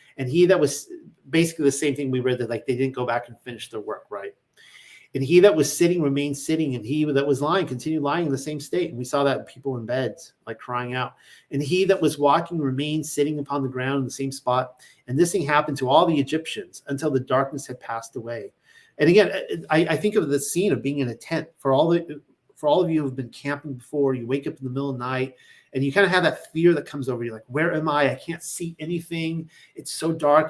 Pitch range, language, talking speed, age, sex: 130-155 Hz, English, 260 wpm, 40-59, male